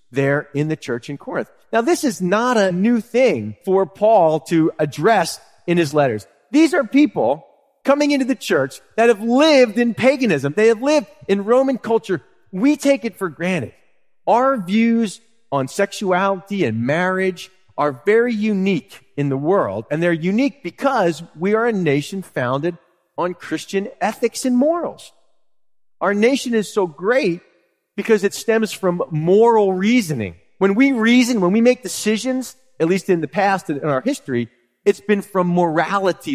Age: 40-59